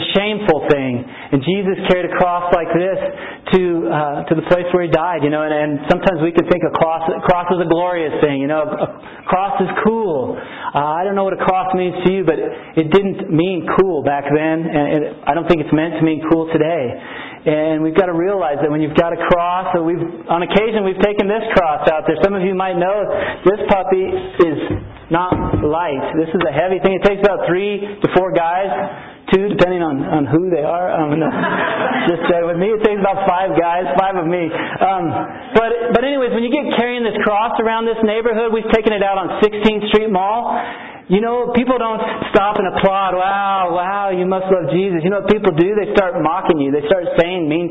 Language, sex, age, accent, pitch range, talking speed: English, male, 40-59, American, 165-205 Hz, 225 wpm